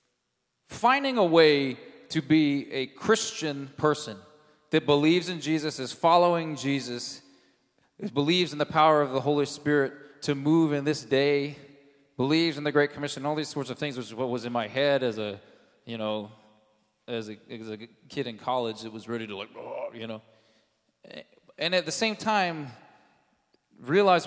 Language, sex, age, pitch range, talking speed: English, male, 20-39, 120-155 Hz, 160 wpm